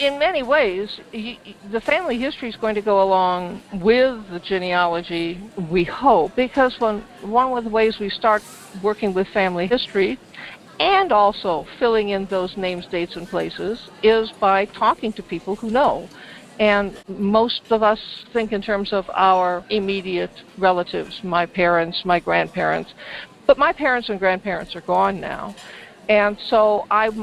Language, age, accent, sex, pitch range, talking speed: English, 60-79, American, female, 185-230 Hz, 150 wpm